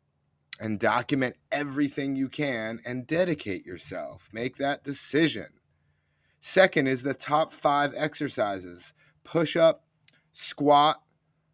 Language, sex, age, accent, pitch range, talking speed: English, male, 30-49, American, 125-155 Hz, 105 wpm